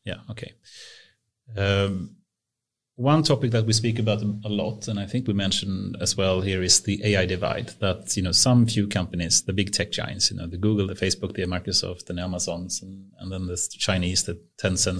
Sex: male